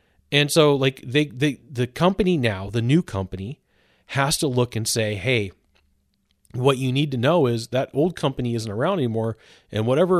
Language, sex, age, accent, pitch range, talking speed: English, male, 40-59, American, 110-145 Hz, 180 wpm